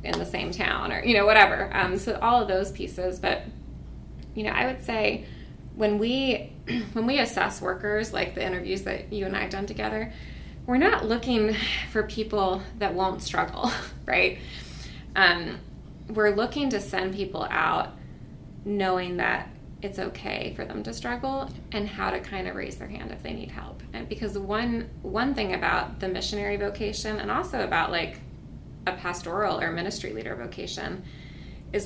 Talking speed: 170 wpm